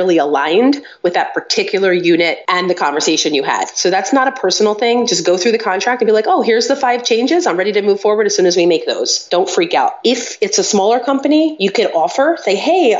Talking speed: 245 wpm